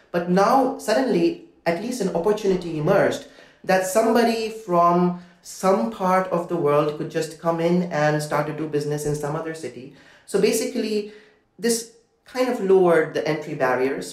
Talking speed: 160 wpm